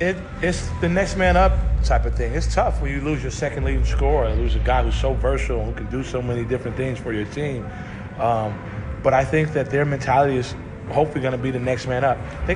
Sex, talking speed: male, 245 wpm